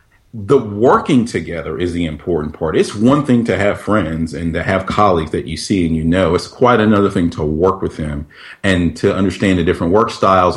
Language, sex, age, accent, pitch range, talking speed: English, male, 40-59, American, 90-110 Hz, 215 wpm